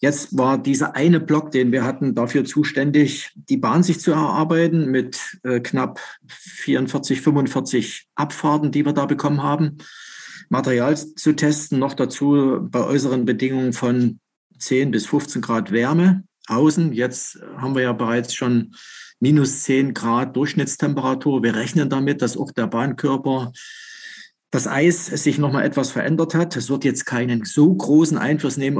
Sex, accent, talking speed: male, German, 150 wpm